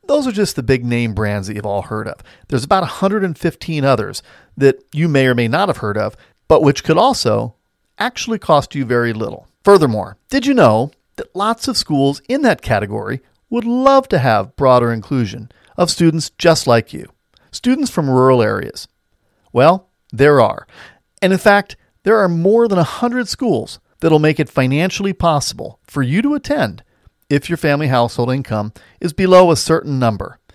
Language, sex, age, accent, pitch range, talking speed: English, male, 40-59, American, 125-200 Hz, 180 wpm